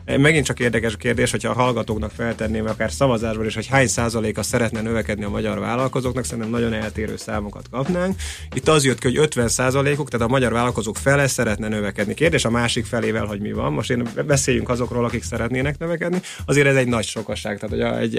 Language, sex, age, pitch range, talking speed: Hungarian, male, 30-49, 110-130 Hz, 200 wpm